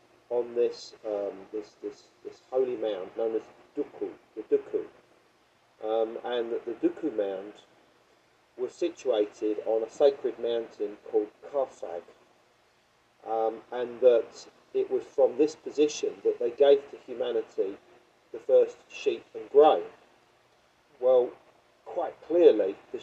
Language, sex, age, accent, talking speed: English, male, 40-59, British, 130 wpm